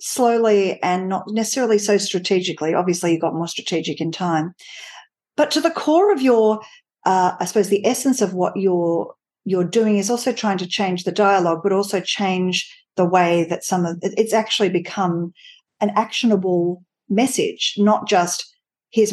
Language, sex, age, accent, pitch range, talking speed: English, female, 50-69, Australian, 180-210 Hz, 165 wpm